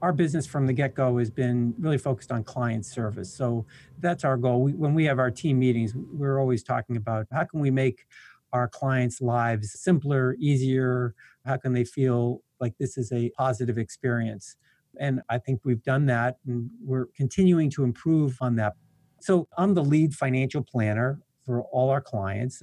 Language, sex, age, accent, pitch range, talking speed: English, male, 50-69, American, 115-135 Hz, 180 wpm